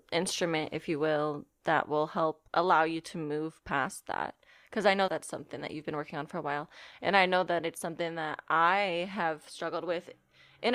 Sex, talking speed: female, 210 wpm